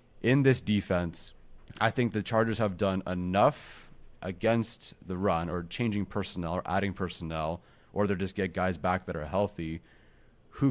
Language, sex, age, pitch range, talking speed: English, male, 30-49, 90-105 Hz, 160 wpm